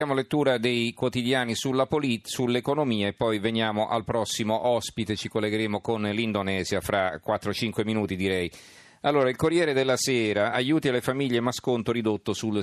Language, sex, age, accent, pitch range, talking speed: Italian, male, 40-59, native, 95-120 Hz, 155 wpm